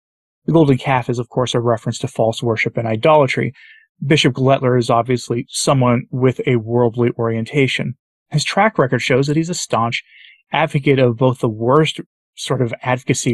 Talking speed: 170 wpm